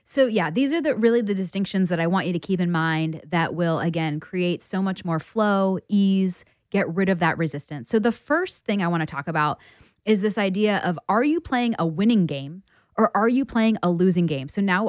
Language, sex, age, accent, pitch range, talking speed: English, female, 20-39, American, 165-205 Hz, 230 wpm